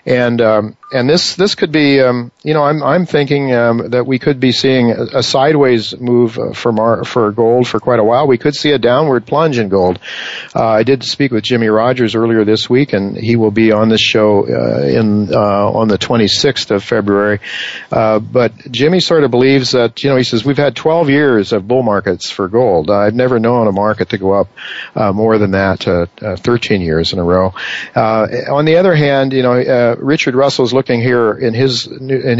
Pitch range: 105-130 Hz